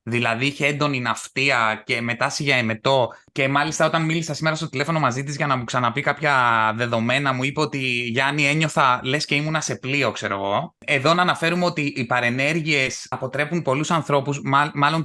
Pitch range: 125-165 Hz